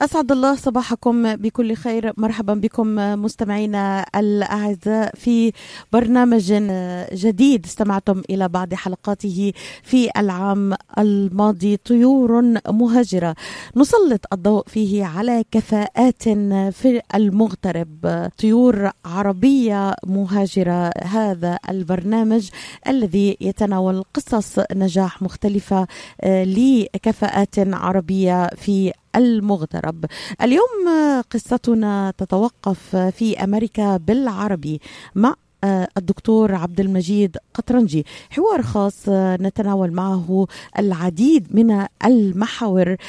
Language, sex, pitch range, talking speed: Arabic, female, 190-225 Hz, 85 wpm